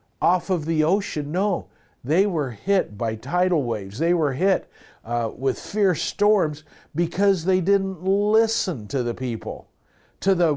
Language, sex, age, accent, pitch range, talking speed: English, male, 60-79, American, 135-195 Hz, 155 wpm